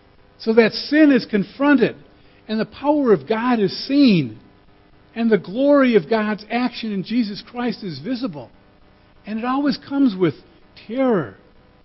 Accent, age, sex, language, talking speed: American, 50-69, male, English, 145 wpm